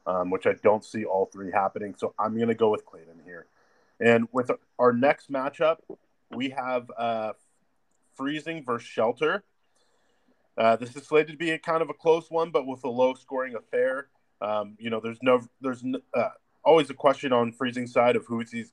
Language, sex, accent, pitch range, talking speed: English, male, American, 110-135 Hz, 200 wpm